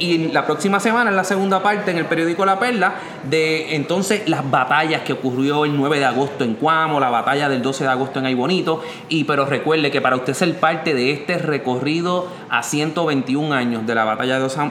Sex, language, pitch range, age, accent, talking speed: male, English, 145-175 Hz, 30-49, Venezuelan, 210 wpm